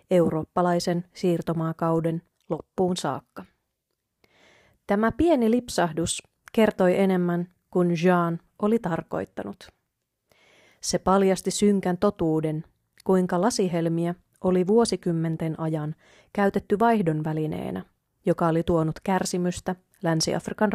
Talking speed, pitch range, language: 85 wpm, 165-200 Hz, Finnish